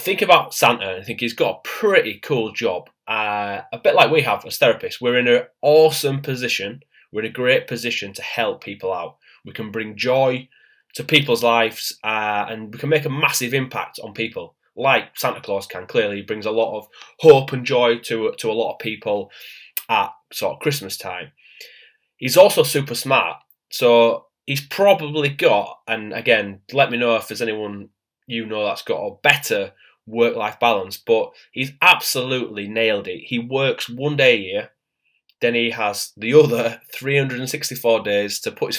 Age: 20-39